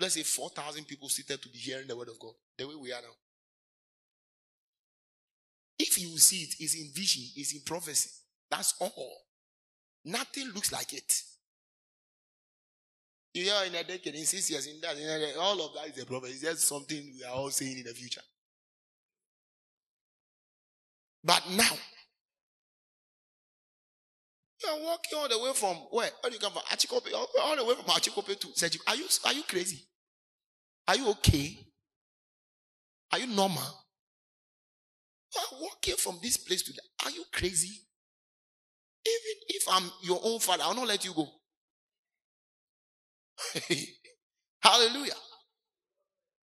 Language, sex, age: English, male, 30-49